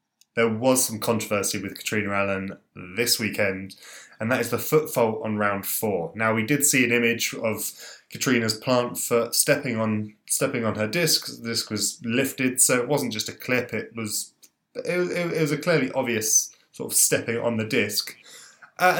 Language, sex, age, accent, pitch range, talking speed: English, male, 10-29, British, 105-135 Hz, 190 wpm